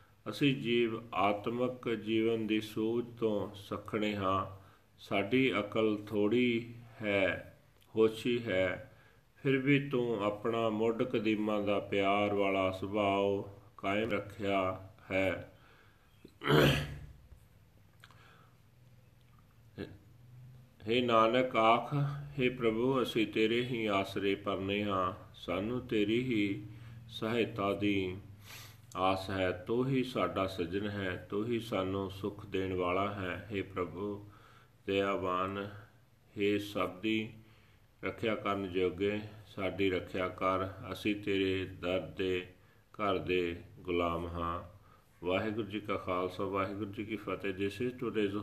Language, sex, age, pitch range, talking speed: Punjabi, male, 40-59, 95-115 Hz, 105 wpm